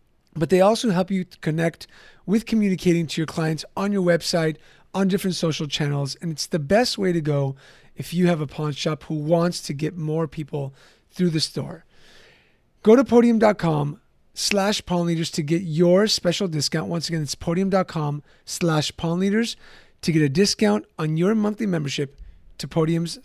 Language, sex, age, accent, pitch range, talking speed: English, male, 30-49, American, 155-190 Hz, 170 wpm